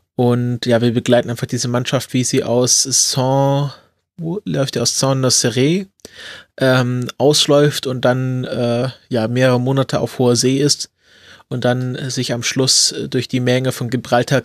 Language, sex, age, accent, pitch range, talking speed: German, male, 20-39, German, 120-135 Hz, 165 wpm